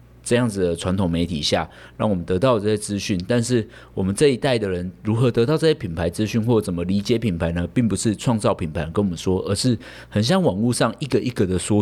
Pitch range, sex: 85-115 Hz, male